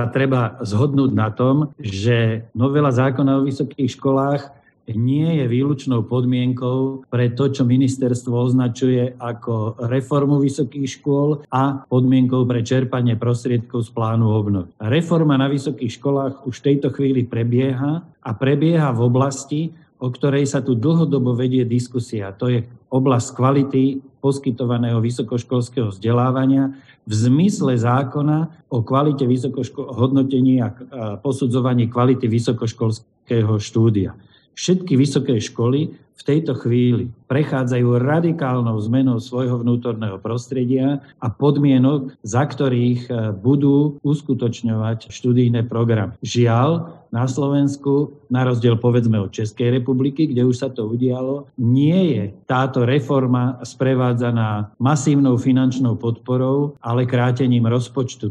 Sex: male